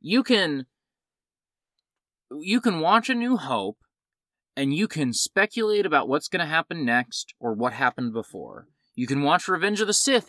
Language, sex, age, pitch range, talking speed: English, male, 20-39, 125-200 Hz, 170 wpm